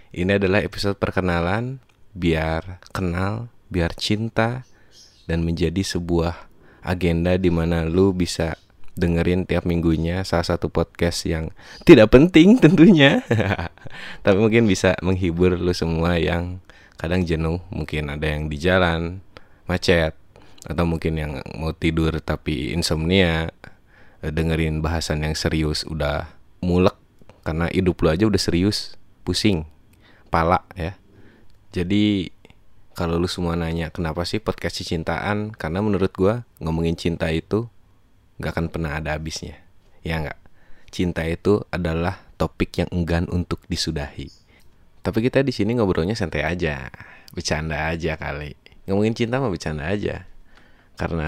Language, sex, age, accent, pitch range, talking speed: Indonesian, male, 20-39, native, 80-100 Hz, 130 wpm